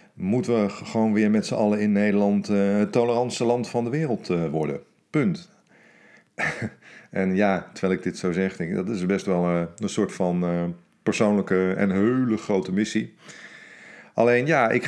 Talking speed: 180 wpm